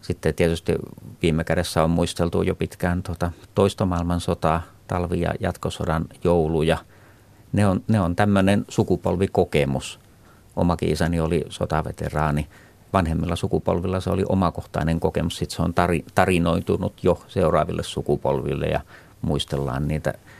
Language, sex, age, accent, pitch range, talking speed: Finnish, male, 50-69, native, 80-95 Hz, 120 wpm